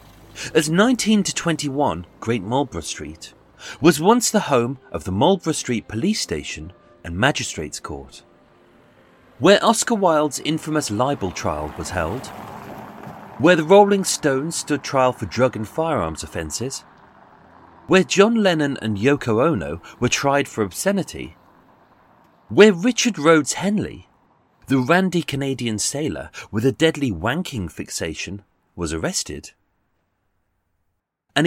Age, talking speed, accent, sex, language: 40-59, 125 wpm, British, male, English